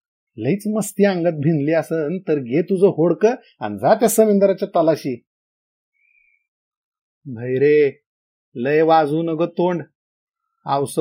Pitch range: 135-185 Hz